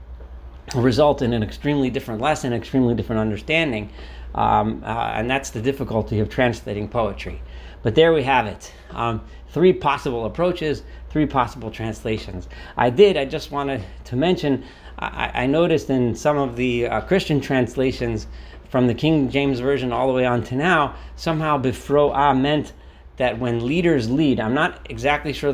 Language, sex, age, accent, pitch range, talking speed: English, male, 40-59, American, 110-135 Hz, 160 wpm